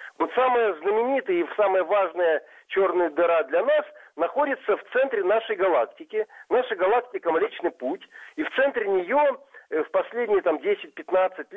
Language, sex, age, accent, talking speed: Russian, male, 50-69, native, 135 wpm